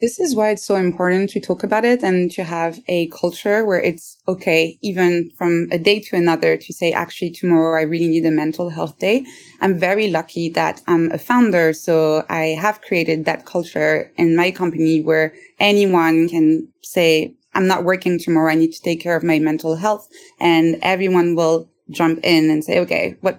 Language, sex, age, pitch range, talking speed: English, female, 20-39, 165-205 Hz, 200 wpm